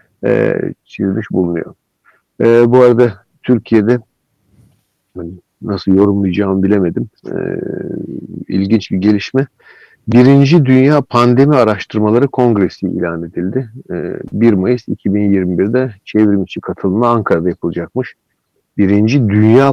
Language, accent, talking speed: Turkish, native, 90 wpm